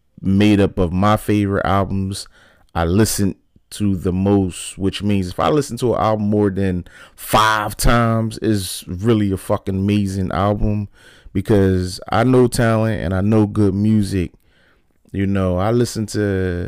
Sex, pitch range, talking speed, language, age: male, 95-110 Hz, 155 wpm, English, 30-49